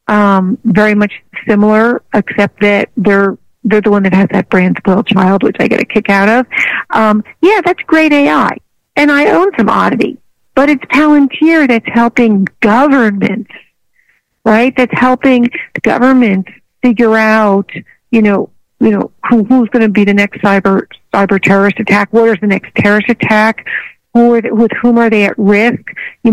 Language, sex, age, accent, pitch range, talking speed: English, female, 50-69, American, 200-240 Hz, 165 wpm